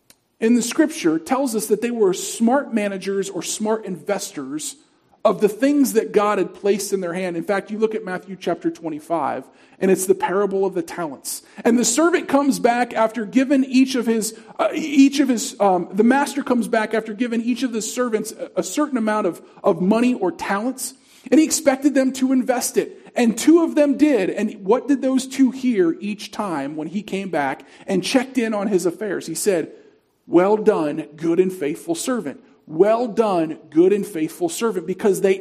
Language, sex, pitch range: English, male, 195-275 Hz